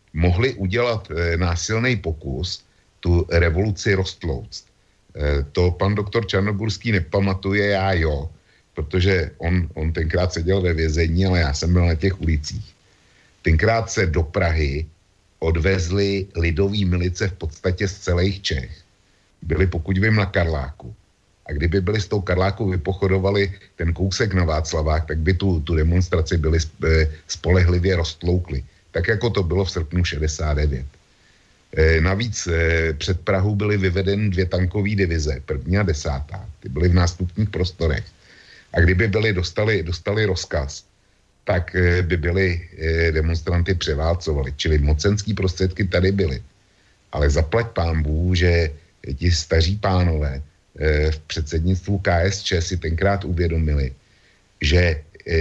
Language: Slovak